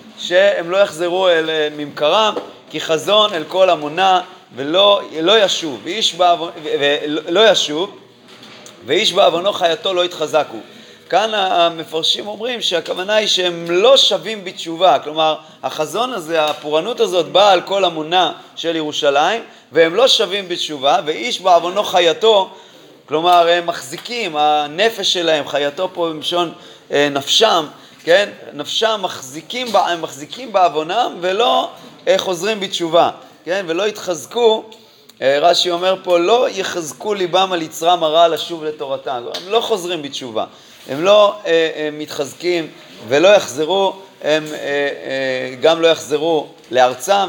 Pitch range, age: 155-195 Hz, 30-49